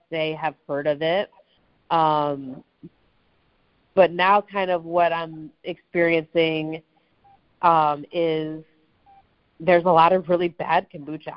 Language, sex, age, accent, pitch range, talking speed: English, female, 30-49, American, 155-190 Hz, 115 wpm